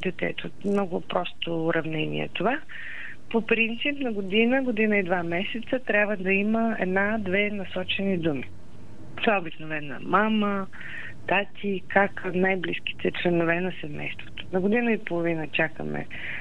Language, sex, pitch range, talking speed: Bulgarian, female, 175-215 Hz, 125 wpm